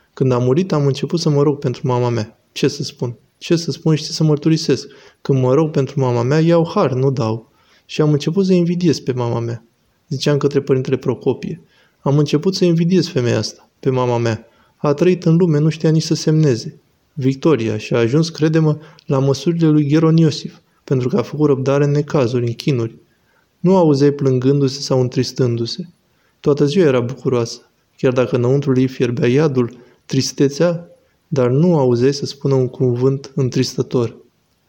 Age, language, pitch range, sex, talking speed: 20-39, Romanian, 125-155 Hz, male, 180 wpm